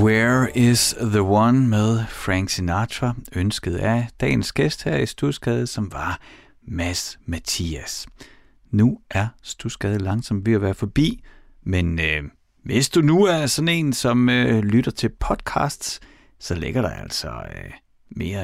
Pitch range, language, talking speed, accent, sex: 90-130 Hz, Danish, 145 wpm, native, male